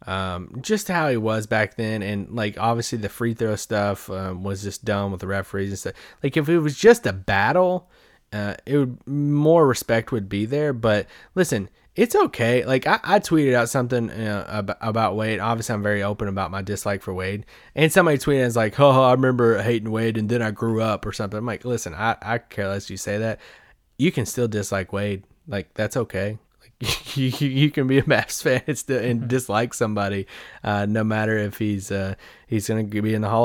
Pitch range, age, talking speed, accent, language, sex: 105-130 Hz, 20-39, 210 wpm, American, English, male